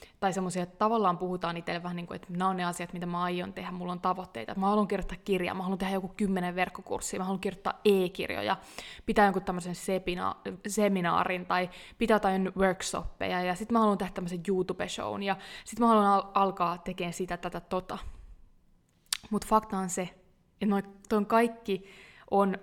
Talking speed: 180 wpm